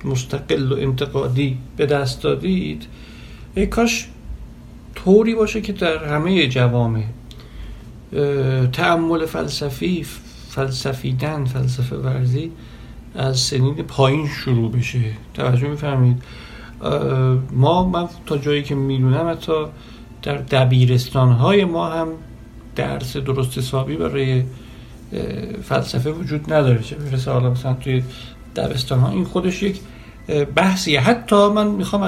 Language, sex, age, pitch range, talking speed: Persian, male, 60-79, 125-170 Hz, 95 wpm